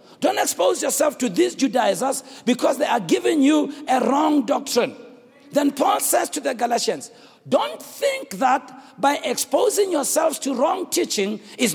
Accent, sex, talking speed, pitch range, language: South African, male, 155 wpm, 255-320 Hz, English